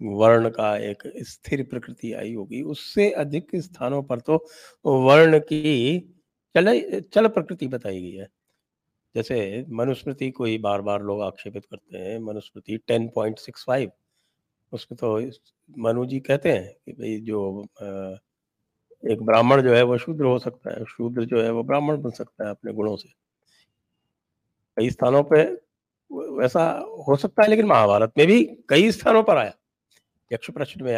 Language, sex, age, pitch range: English, male, 50-69, 100-135 Hz